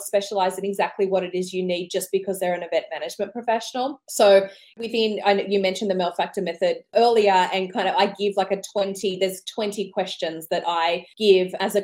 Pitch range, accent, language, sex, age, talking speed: 195-225 Hz, Australian, English, female, 20-39, 205 wpm